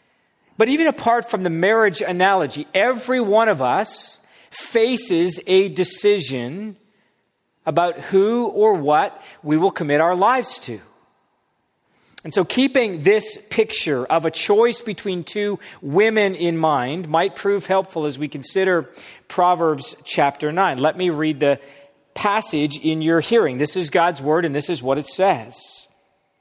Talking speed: 145 wpm